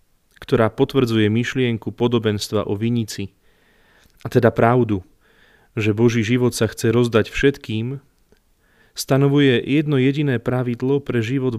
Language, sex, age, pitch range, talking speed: Slovak, male, 30-49, 105-125 Hz, 115 wpm